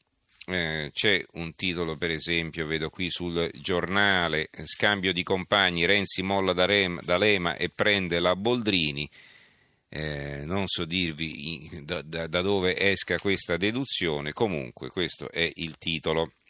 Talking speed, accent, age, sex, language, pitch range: 130 wpm, native, 40-59, male, Italian, 80-100 Hz